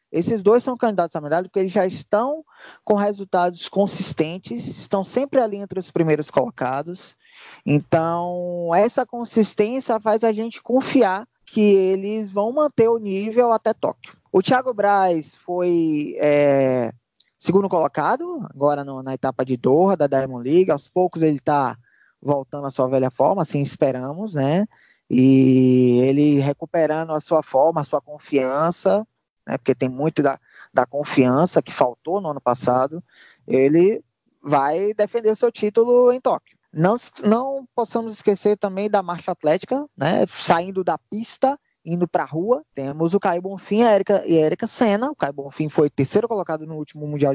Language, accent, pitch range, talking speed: Portuguese, Brazilian, 150-220 Hz, 160 wpm